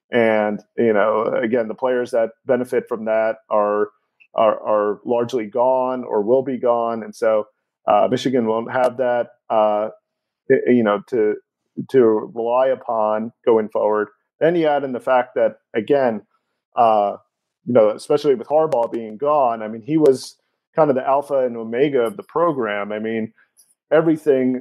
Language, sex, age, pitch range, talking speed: English, male, 40-59, 115-135 Hz, 165 wpm